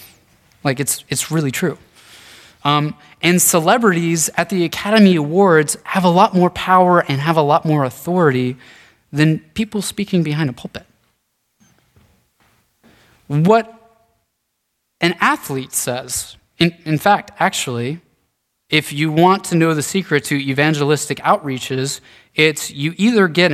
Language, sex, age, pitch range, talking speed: English, male, 20-39, 140-195 Hz, 130 wpm